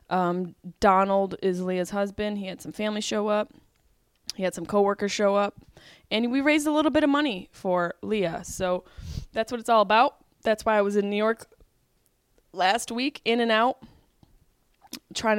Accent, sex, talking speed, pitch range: American, female, 180 wpm, 195-250 Hz